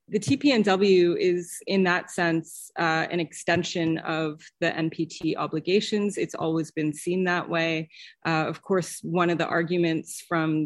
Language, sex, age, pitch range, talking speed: English, female, 30-49, 160-190 Hz, 150 wpm